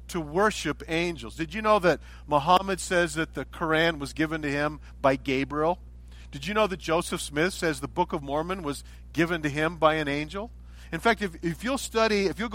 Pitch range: 125-185 Hz